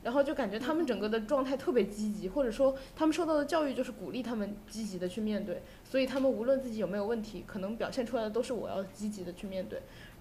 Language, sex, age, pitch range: Chinese, female, 20-39, 205-260 Hz